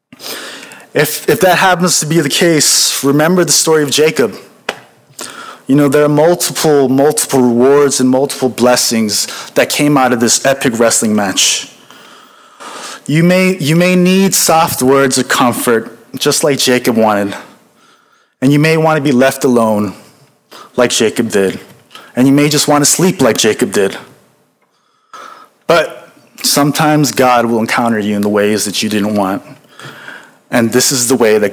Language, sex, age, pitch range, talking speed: English, male, 20-39, 120-155 Hz, 160 wpm